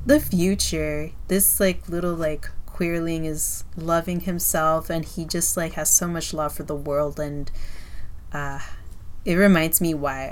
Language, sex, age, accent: English, female, 20-39, American